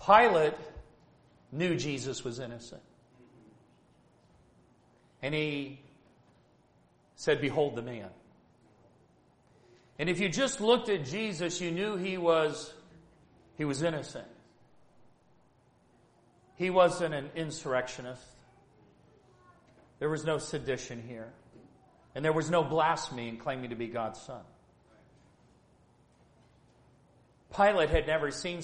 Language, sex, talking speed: English, male, 100 wpm